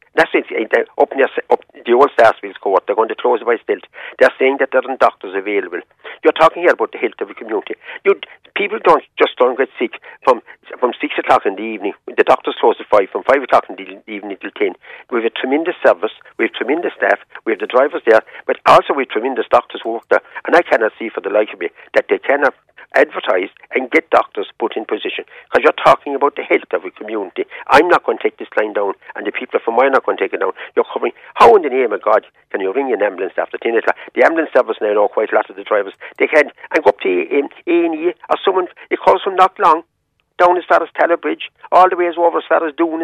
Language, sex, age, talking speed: English, male, 50-69, 265 wpm